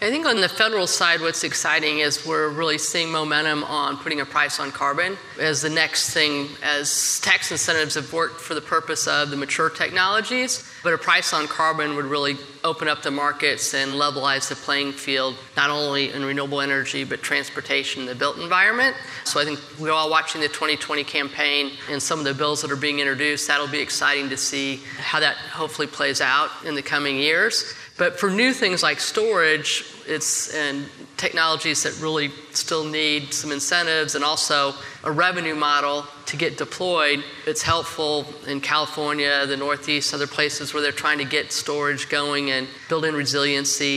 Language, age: English, 30-49